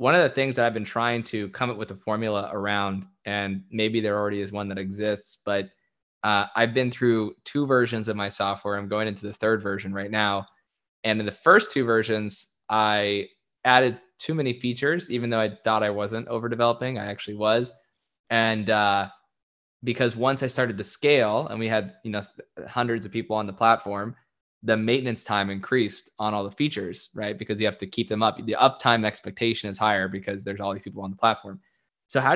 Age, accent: 20-39, American